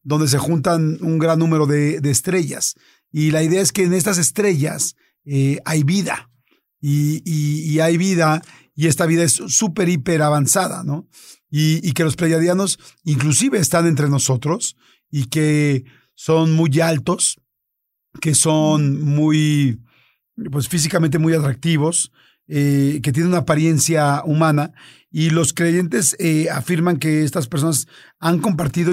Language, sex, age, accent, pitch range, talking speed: Spanish, male, 40-59, Mexican, 150-170 Hz, 145 wpm